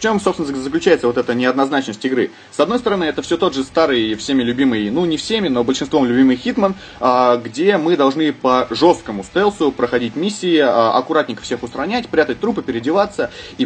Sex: male